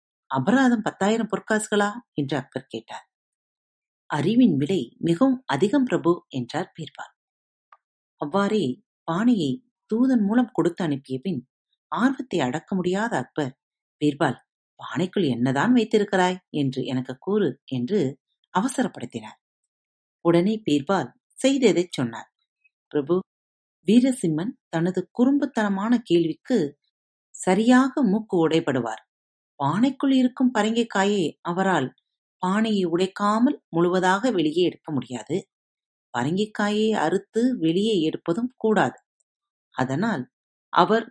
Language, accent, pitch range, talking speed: Tamil, native, 150-240 Hz, 90 wpm